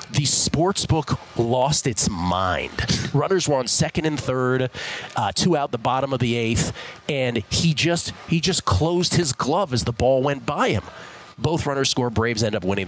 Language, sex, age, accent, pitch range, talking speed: English, male, 30-49, American, 105-145 Hz, 190 wpm